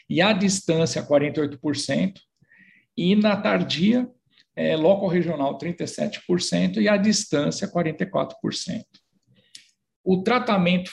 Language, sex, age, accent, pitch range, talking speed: Portuguese, male, 50-69, Brazilian, 150-200 Hz, 90 wpm